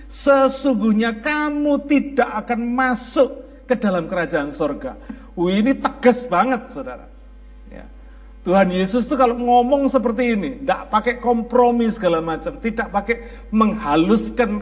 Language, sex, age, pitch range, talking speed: Malay, male, 50-69, 215-270 Hz, 125 wpm